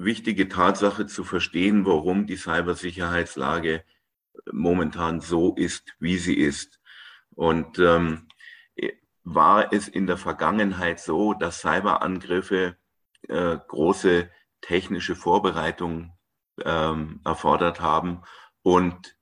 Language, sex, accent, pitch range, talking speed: German, male, German, 80-95 Hz, 95 wpm